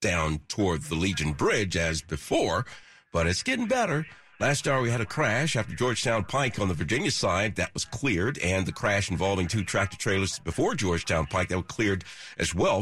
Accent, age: American, 50-69